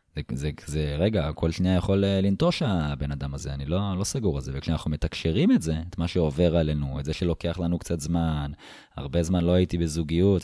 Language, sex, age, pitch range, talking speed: Hebrew, male, 20-39, 75-90 Hz, 215 wpm